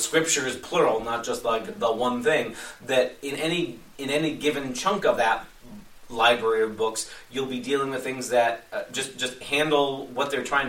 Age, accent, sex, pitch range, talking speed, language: 30-49, American, male, 120-145 Hz, 190 wpm, English